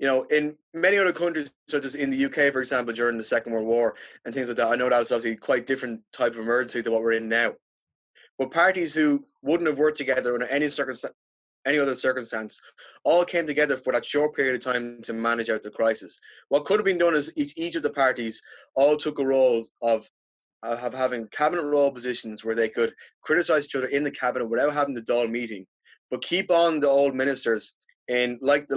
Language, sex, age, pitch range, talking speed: English, male, 20-39, 115-150 Hz, 225 wpm